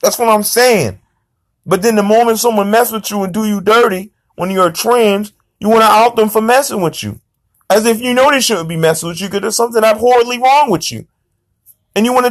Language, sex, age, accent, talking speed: English, male, 40-59, American, 225 wpm